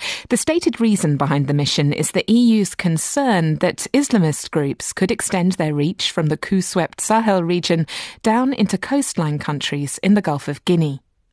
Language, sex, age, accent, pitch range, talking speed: English, female, 30-49, British, 165-225 Hz, 165 wpm